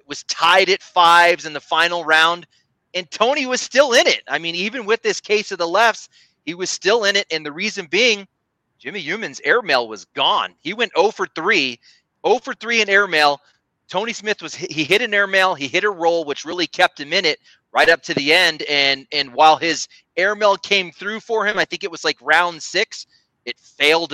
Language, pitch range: English, 135-185 Hz